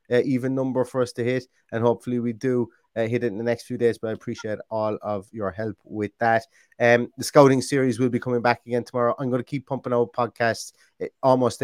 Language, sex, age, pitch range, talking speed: English, male, 30-49, 110-130 Hz, 235 wpm